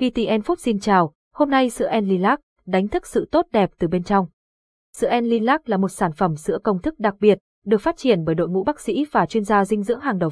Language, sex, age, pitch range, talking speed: Vietnamese, female, 20-39, 185-240 Hz, 245 wpm